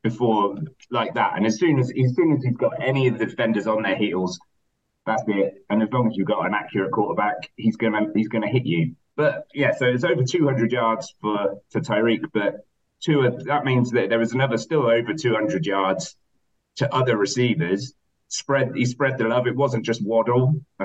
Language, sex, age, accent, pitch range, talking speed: English, male, 30-49, British, 105-125 Hz, 210 wpm